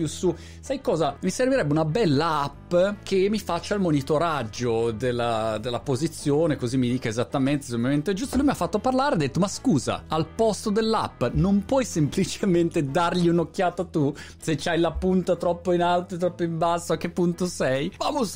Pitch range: 125-190 Hz